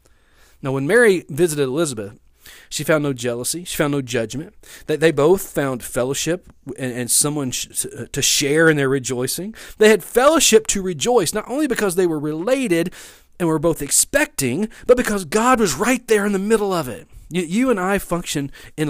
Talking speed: 180 wpm